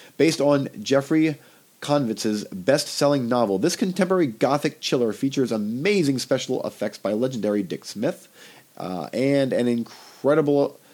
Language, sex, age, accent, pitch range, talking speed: English, male, 40-59, American, 105-145 Hz, 120 wpm